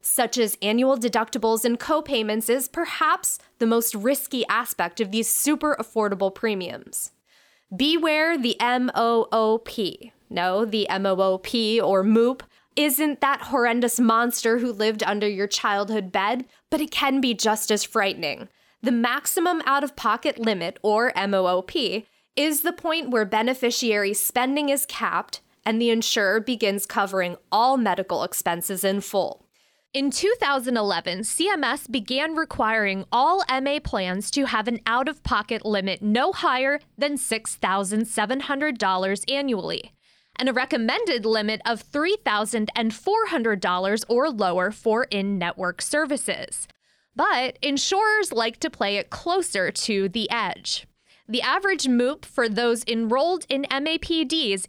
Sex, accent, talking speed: female, American, 125 wpm